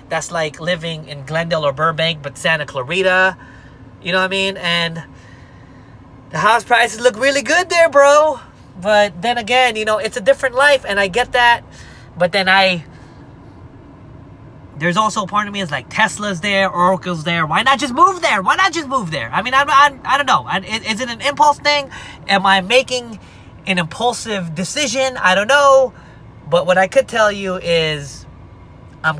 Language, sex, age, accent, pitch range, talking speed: English, male, 20-39, American, 135-195 Hz, 190 wpm